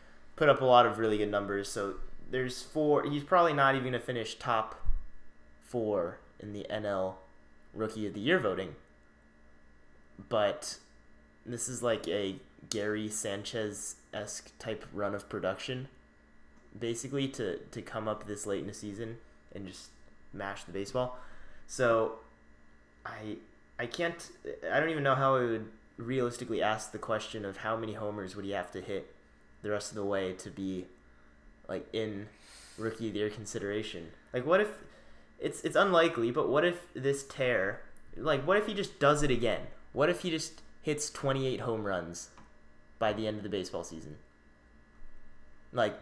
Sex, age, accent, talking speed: male, 20-39, American, 165 wpm